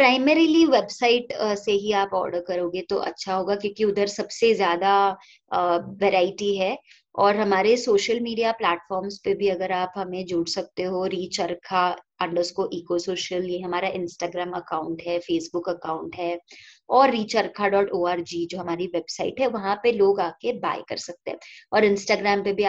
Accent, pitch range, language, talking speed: native, 180-220 Hz, Hindi, 155 wpm